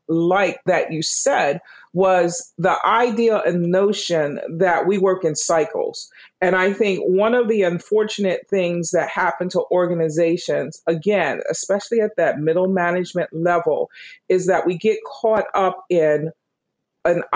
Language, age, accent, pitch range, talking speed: English, 40-59, American, 170-215 Hz, 140 wpm